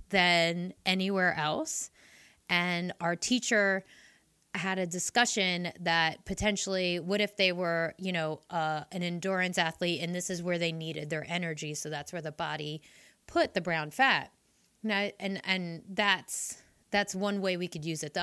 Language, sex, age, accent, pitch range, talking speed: English, female, 30-49, American, 170-200 Hz, 165 wpm